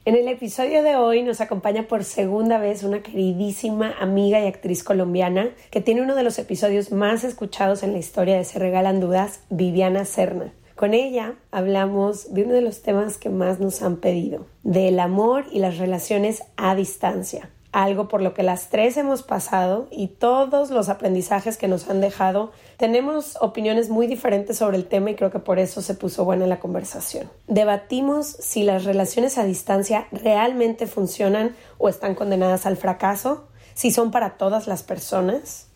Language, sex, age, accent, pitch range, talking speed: Spanish, female, 30-49, Mexican, 195-230 Hz, 175 wpm